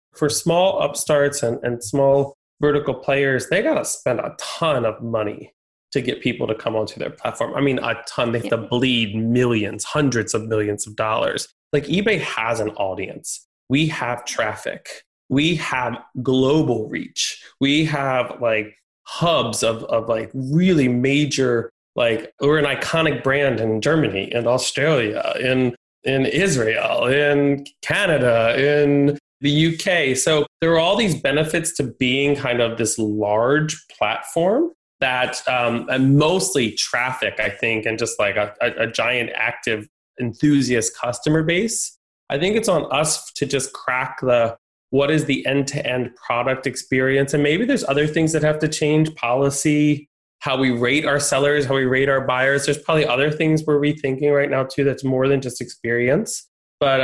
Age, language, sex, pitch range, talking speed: 20-39, English, male, 120-150 Hz, 165 wpm